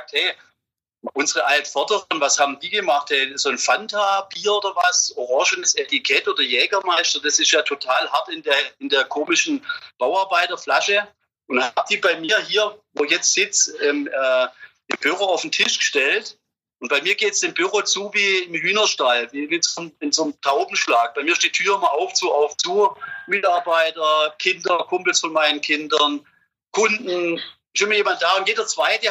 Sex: male